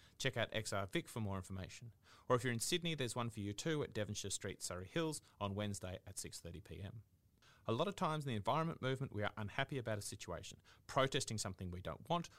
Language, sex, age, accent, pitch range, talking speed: English, male, 30-49, Australian, 100-125 Hz, 220 wpm